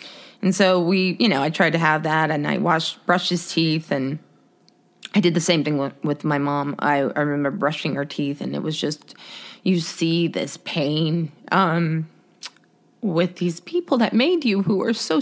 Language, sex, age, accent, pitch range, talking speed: English, female, 20-39, American, 160-230 Hz, 195 wpm